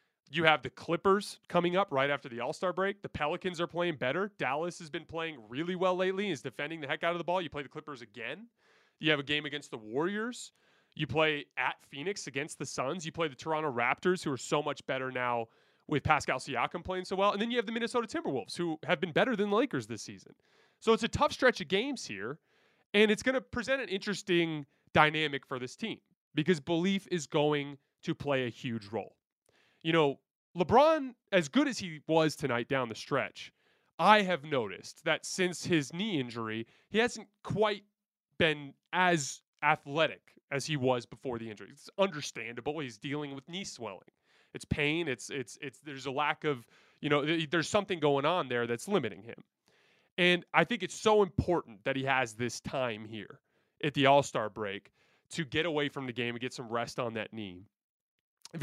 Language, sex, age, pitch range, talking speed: English, male, 30-49, 140-185 Hz, 205 wpm